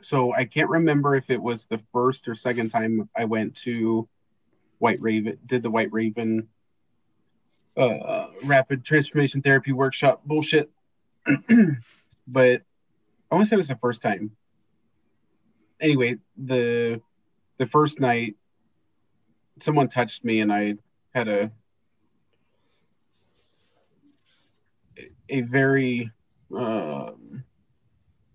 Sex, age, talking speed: male, 30-49, 110 wpm